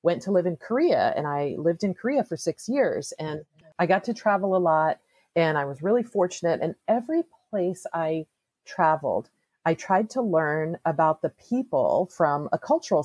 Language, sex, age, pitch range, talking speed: English, female, 40-59, 155-215 Hz, 185 wpm